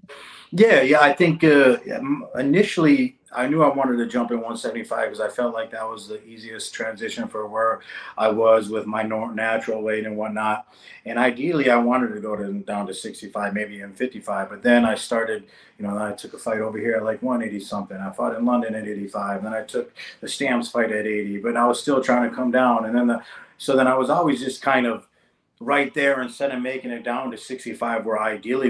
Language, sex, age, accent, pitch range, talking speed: English, male, 30-49, American, 105-125 Hz, 225 wpm